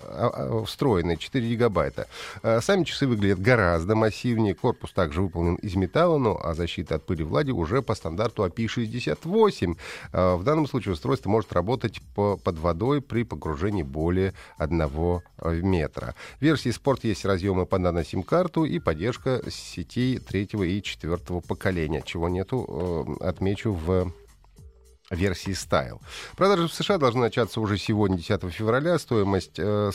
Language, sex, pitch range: Russian, male, 85-125 Hz